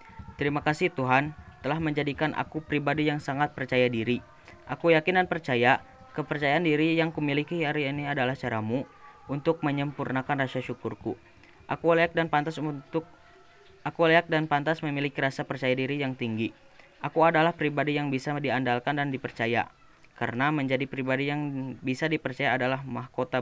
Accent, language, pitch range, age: native, Indonesian, 130-150 Hz, 20-39